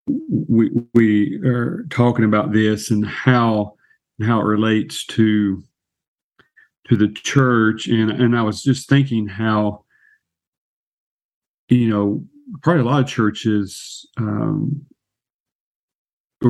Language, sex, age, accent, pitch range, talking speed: English, male, 40-59, American, 105-125 Hz, 115 wpm